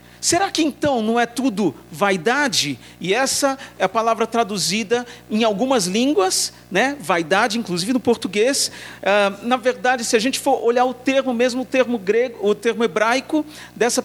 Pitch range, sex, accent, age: 155-235 Hz, male, Brazilian, 50-69